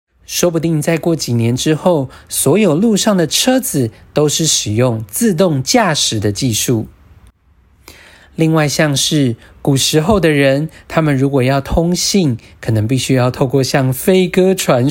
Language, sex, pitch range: Chinese, male, 120-165 Hz